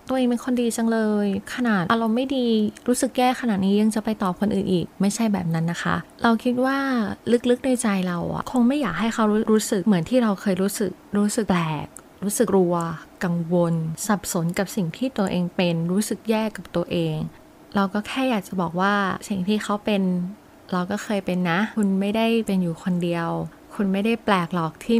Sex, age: female, 20-39